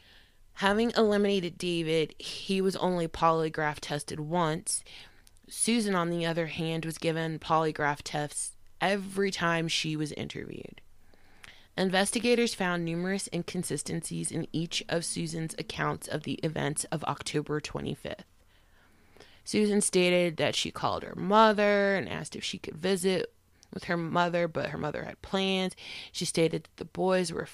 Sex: female